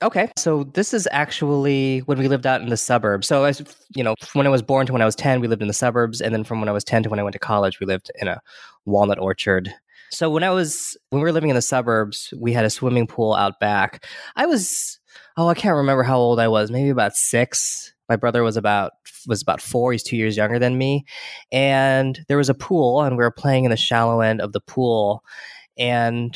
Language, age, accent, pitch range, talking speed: English, 20-39, American, 105-135 Hz, 255 wpm